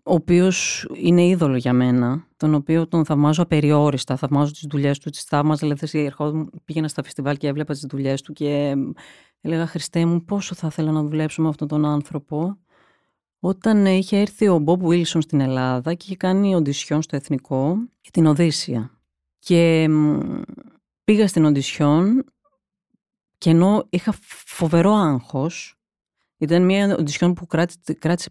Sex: female